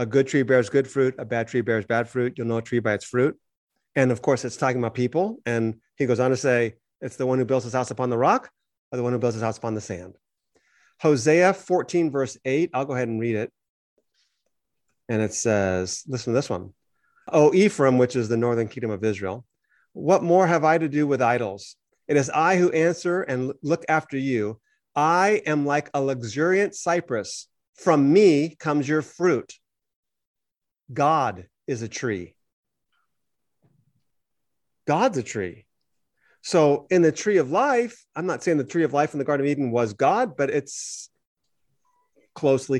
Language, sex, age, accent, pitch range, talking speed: English, male, 30-49, American, 125-165 Hz, 190 wpm